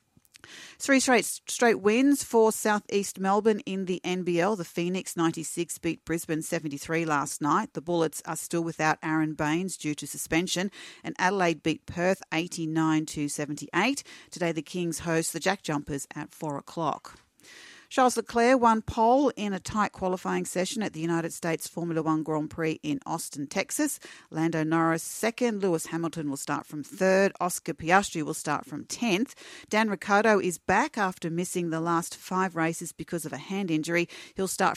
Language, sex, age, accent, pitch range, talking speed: English, female, 40-59, Australian, 160-205 Hz, 175 wpm